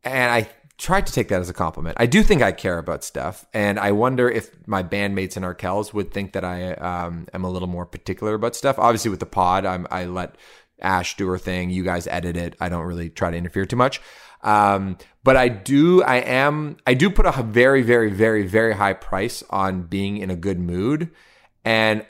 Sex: male